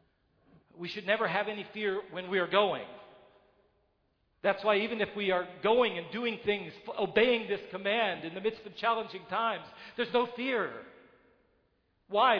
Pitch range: 205-250 Hz